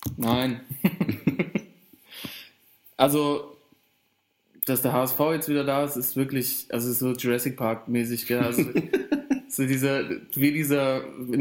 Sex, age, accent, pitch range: male, 20-39, German, 125-145 Hz